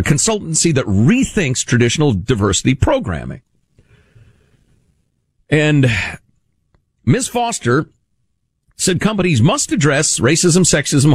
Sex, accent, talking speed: male, American, 85 wpm